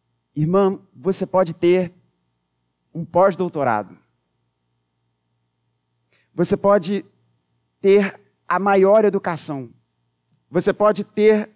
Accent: Brazilian